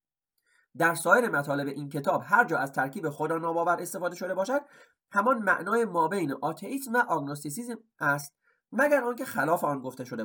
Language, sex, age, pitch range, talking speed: Persian, male, 30-49, 160-240 Hz, 160 wpm